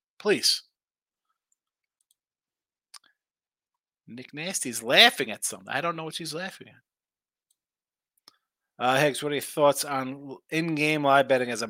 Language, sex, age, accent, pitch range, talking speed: English, male, 30-49, American, 130-175 Hz, 130 wpm